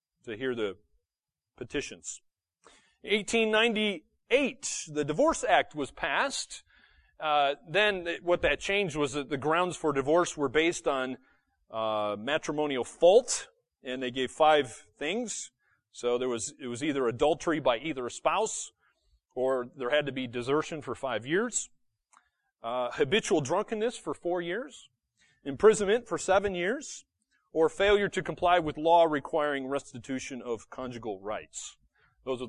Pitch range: 130-180 Hz